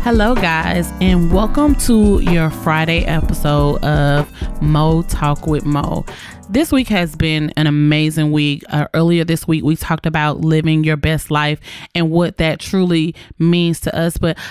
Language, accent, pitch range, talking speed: English, American, 150-190 Hz, 160 wpm